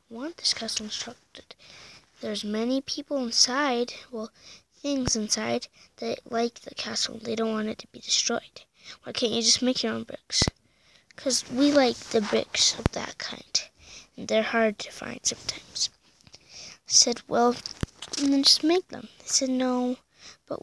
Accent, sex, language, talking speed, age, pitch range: American, female, English, 165 wpm, 20-39, 225-270 Hz